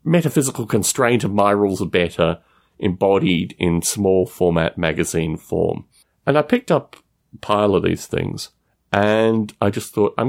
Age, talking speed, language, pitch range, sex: 40-59, 155 wpm, English, 95-140 Hz, male